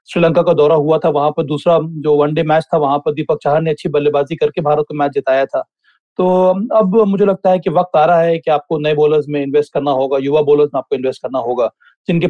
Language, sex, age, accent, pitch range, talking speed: Hindi, male, 30-49, native, 150-185 Hz, 250 wpm